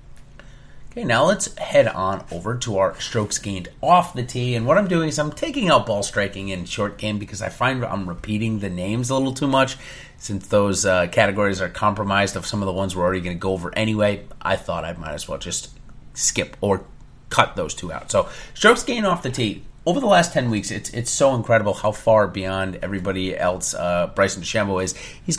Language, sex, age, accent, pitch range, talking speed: English, male, 30-49, American, 100-125 Hz, 220 wpm